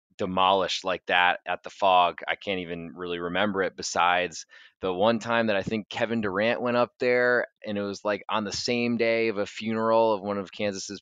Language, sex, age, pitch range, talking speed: English, male, 20-39, 100-115 Hz, 210 wpm